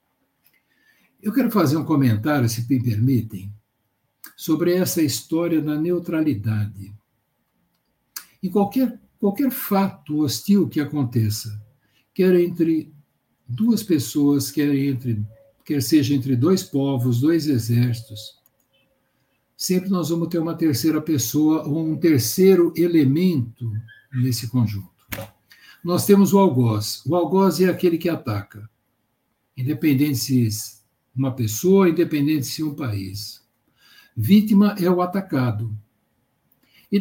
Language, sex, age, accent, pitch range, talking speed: Portuguese, male, 60-79, Brazilian, 120-180 Hz, 110 wpm